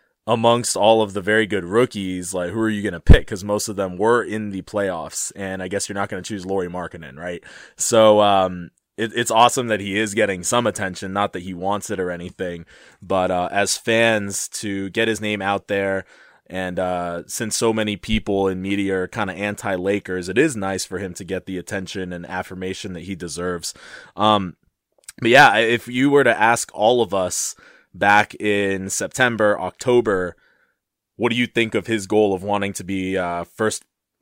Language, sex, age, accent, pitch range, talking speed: English, male, 20-39, American, 95-110 Hz, 205 wpm